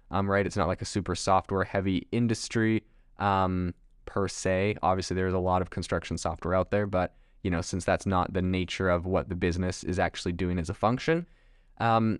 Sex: male